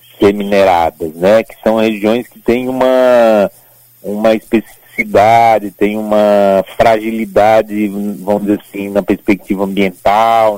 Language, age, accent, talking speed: Portuguese, 40-59, Brazilian, 100 wpm